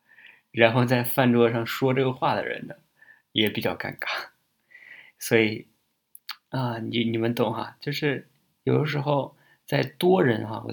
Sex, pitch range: male, 110-140 Hz